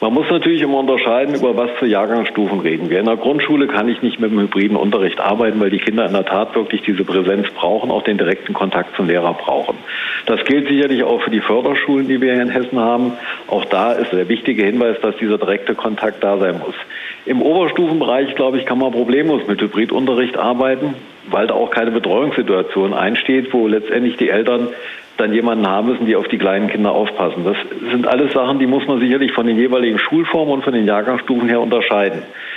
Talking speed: 210 wpm